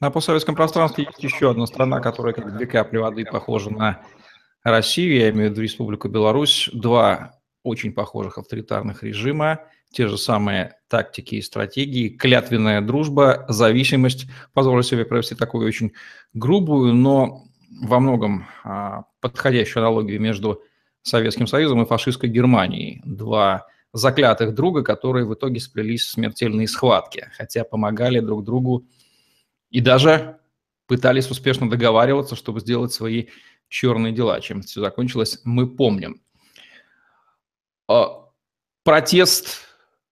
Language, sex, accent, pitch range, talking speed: Russian, male, native, 110-130 Hz, 125 wpm